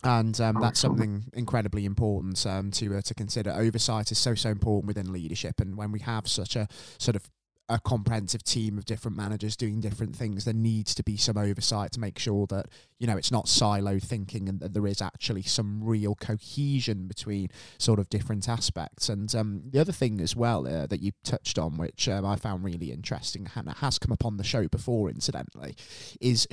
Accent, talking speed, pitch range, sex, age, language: British, 210 wpm, 100-115 Hz, male, 20-39, English